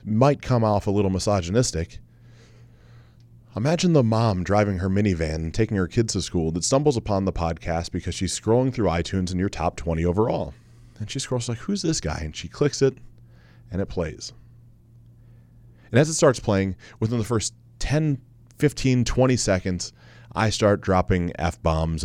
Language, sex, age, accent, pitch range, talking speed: English, male, 30-49, American, 95-120 Hz, 175 wpm